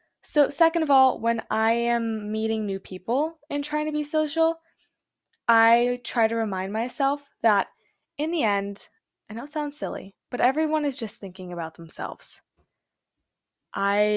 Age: 10-29